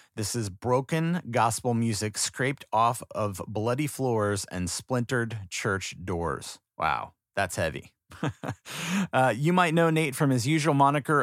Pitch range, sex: 105-150 Hz, male